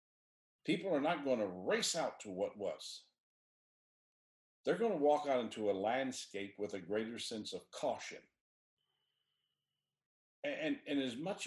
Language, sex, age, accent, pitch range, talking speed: English, male, 50-69, American, 100-145 Hz, 150 wpm